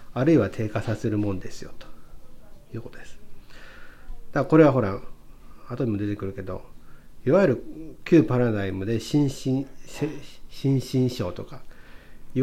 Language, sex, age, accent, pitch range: Japanese, male, 40-59, native, 105-145 Hz